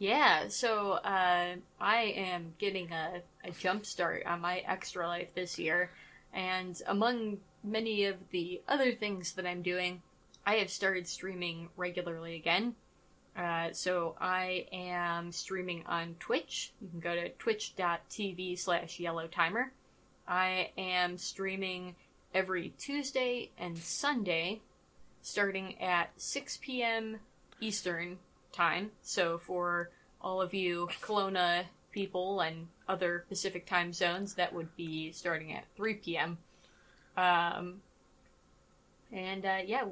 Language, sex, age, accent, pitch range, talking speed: English, female, 20-39, American, 175-195 Hz, 120 wpm